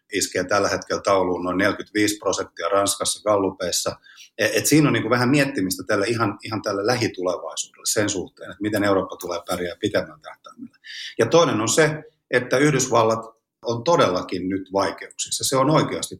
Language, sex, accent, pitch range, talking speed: Finnish, male, native, 100-130 Hz, 150 wpm